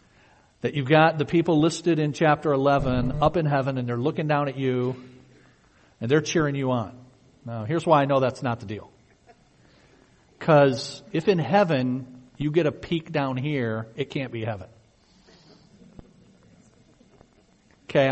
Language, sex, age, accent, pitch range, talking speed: English, male, 50-69, American, 125-160 Hz, 155 wpm